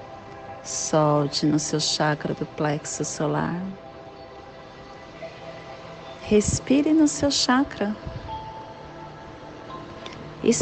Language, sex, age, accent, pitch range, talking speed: Portuguese, female, 40-59, Brazilian, 150-170 Hz, 70 wpm